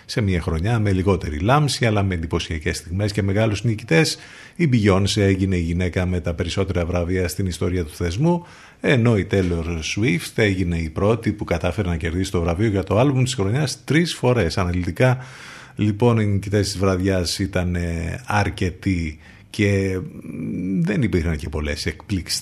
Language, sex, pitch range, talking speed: Greek, male, 90-110 Hz, 160 wpm